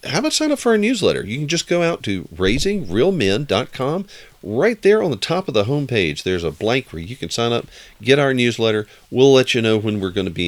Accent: American